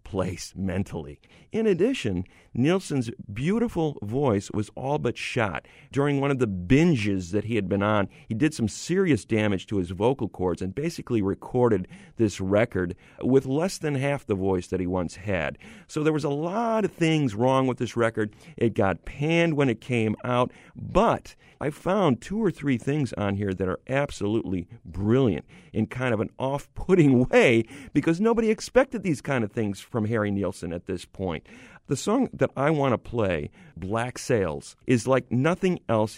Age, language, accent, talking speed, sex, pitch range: 40-59, English, American, 180 wpm, male, 100-140 Hz